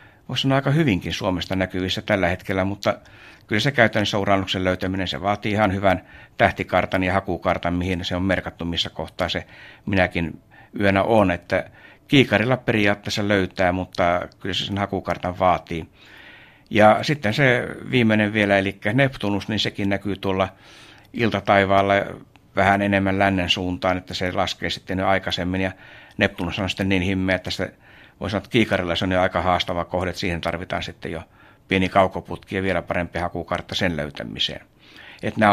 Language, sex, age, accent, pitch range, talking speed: Finnish, male, 60-79, native, 90-105 Hz, 160 wpm